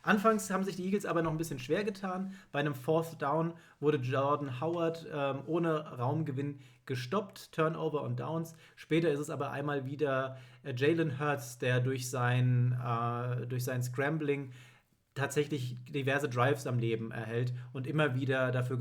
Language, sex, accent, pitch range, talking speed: German, male, German, 125-155 Hz, 165 wpm